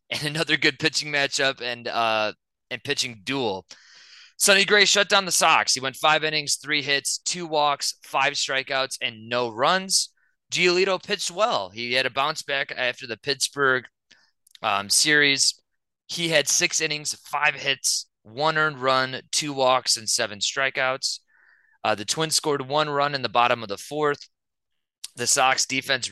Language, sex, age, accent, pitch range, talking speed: English, male, 20-39, American, 115-150 Hz, 165 wpm